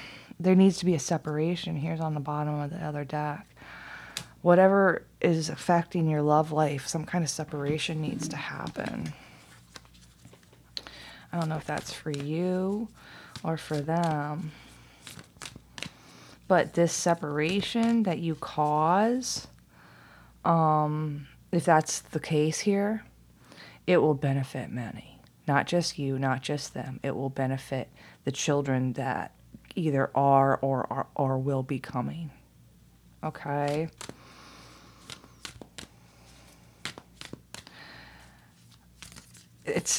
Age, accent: 20-39, American